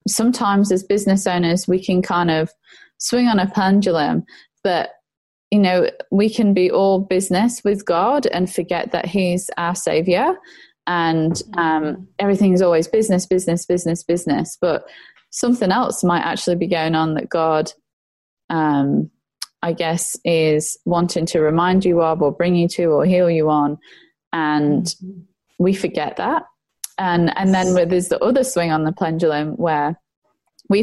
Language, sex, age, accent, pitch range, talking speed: English, female, 20-39, British, 160-190 Hz, 155 wpm